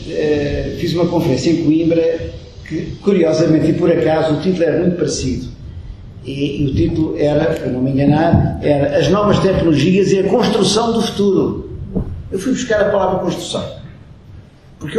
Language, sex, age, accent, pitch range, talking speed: Portuguese, male, 50-69, Portuguese, 150-205 Hz, 160 wpm